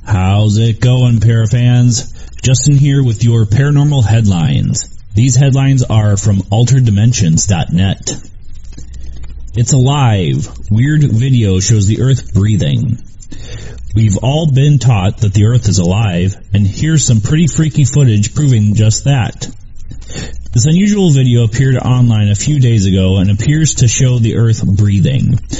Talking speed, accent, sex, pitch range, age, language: 135 wpm, American, male, 105-130 Hz, 30-49, English